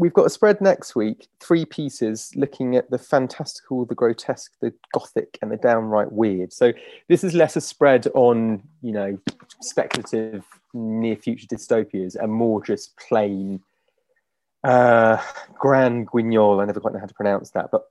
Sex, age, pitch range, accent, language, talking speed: male, 30-49, 105-140 Hz, British, English, 165 wpm